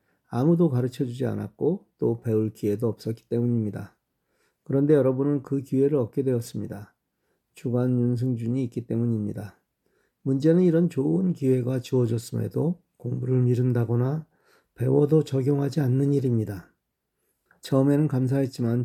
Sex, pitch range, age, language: male, 115-140 Hz, 40-59, Korean